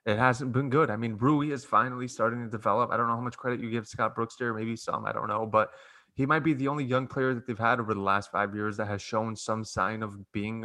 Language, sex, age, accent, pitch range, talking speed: English, male, 20-39, American, 115-145 Hz, 285 wpm